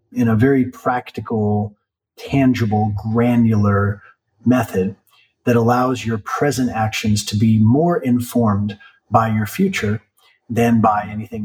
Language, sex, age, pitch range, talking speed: English, male, 40-59, 110-150 Hz, 115 wpm